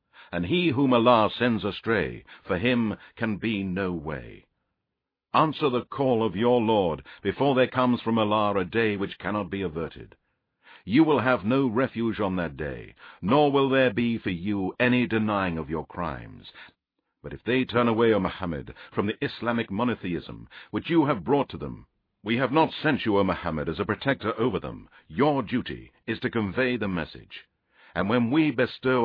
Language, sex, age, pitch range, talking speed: English, male, 60-79, 95-125 Hz, 180 wpm